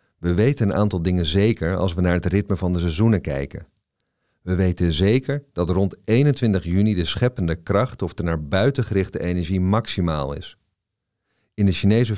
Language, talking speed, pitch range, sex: Dutch, 175 wpm, 85-110 Hz, male